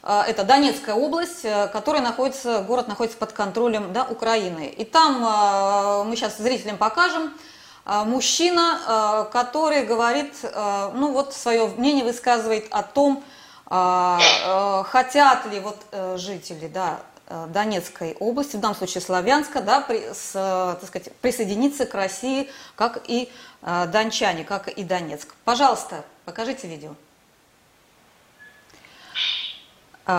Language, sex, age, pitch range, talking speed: Russian, female, 20-39, 205-290 Hz, 105 wpm